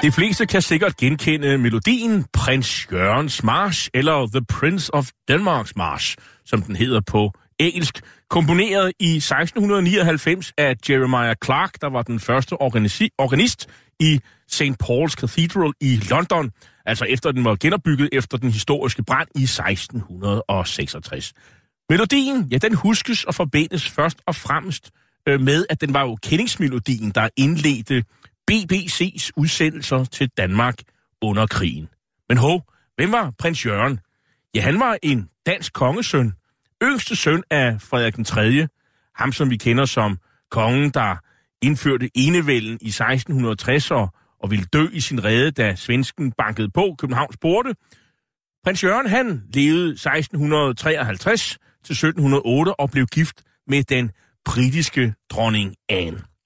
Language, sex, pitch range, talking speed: Danish, male, 115-160 Hz, 135 wpm